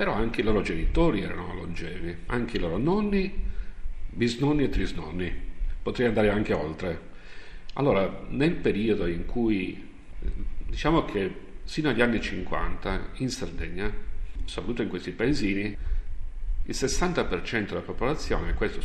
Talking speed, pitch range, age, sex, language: 125 wpm, 85-105 Hz, 50-69, male, Italian